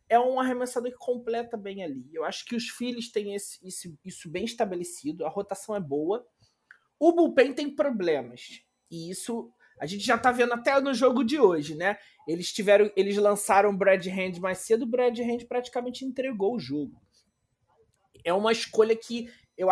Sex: male